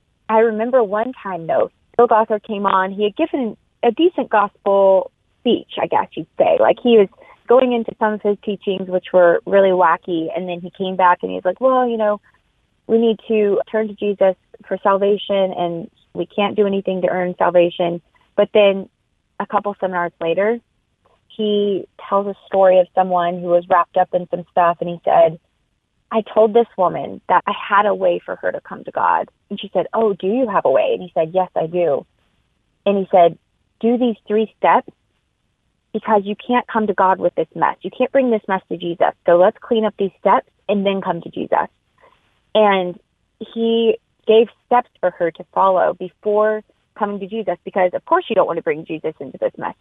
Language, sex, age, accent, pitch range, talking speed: English, female, 20-39, American, 180-220 Hz, 205 wpm